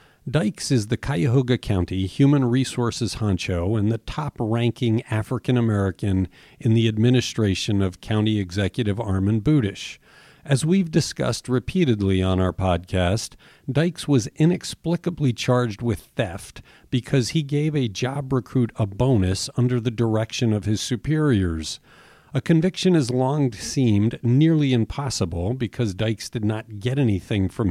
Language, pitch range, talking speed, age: English, 105-135 Hz, 135 wpm, 50-69